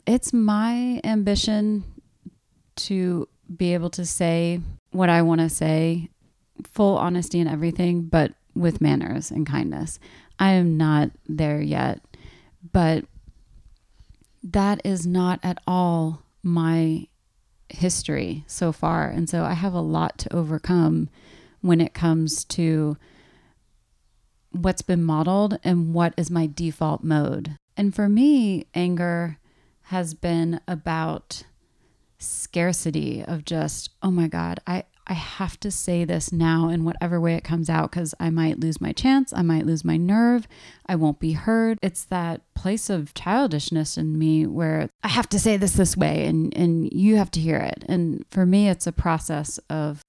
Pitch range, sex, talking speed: 160-185 Hz, female, 155 wpm